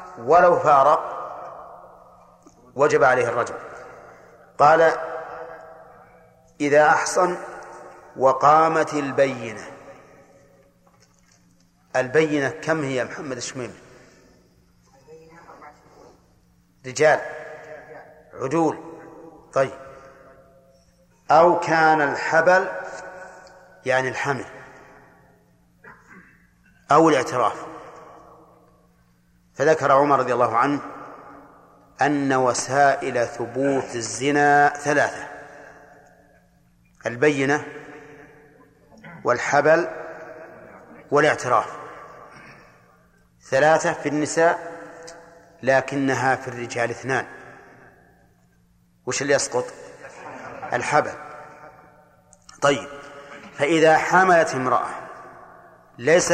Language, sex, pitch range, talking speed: Arabic, male, 125-160 Hz, 60 wpm